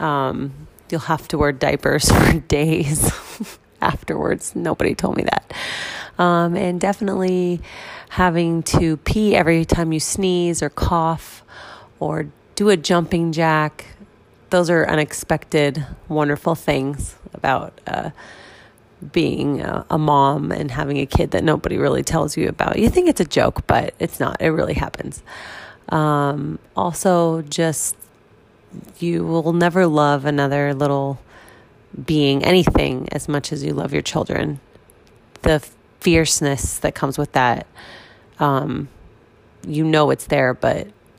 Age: 30-49